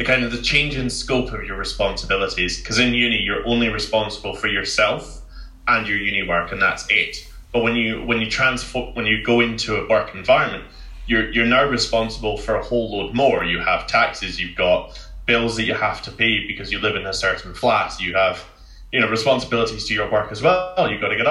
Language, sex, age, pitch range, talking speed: English, male, 20-39, 90-120 Hz, 215 wpm